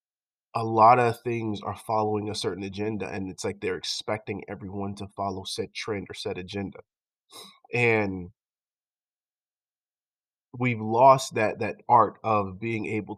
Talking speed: 140 wpm